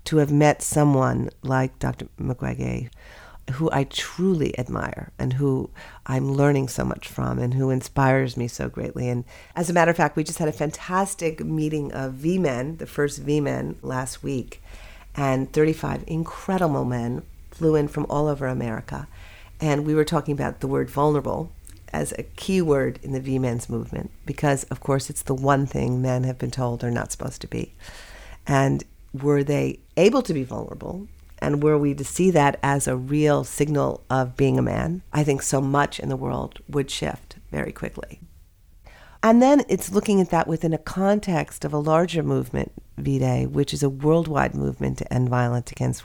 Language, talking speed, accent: English, 180 wpm, American